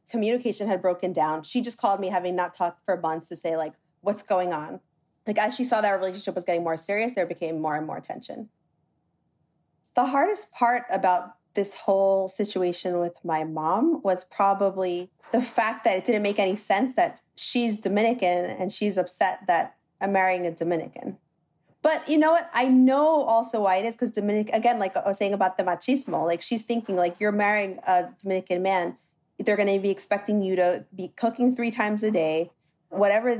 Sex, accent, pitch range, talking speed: female, American, 180-225 Hz, 200 wpm